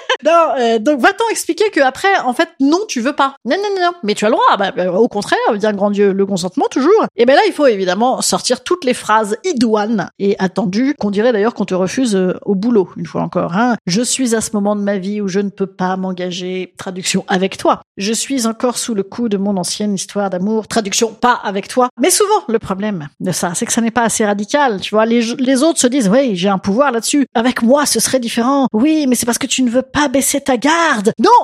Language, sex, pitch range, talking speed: French, female, 220-320 Hz, 260 wpm